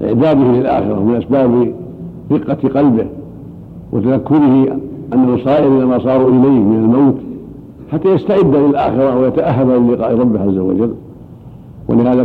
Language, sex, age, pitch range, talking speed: Arabic, male, 70-89, 115-140 Hz, 115 wpm